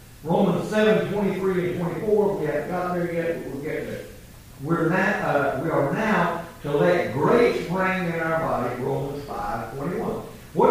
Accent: American